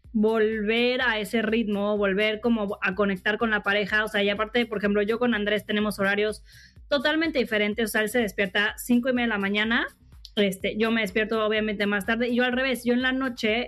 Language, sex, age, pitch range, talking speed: Spanish, female, 20-39, 215-255 Hz, 220 wpm